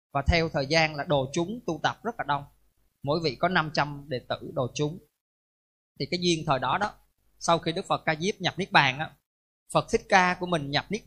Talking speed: 235 wpm